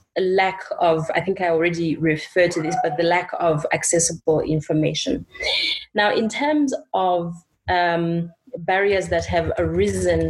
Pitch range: 165-195 Hz